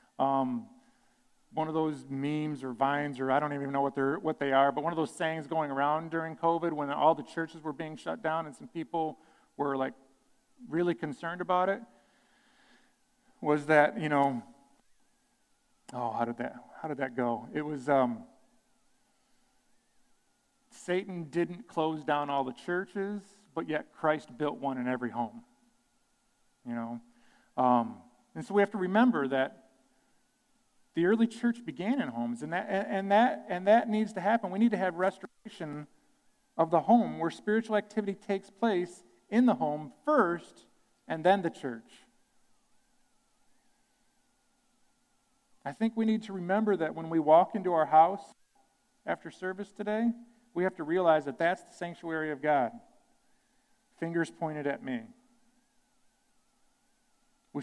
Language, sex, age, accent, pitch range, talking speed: English, male, 40-59, American, 150-240 Hz, 155 wpm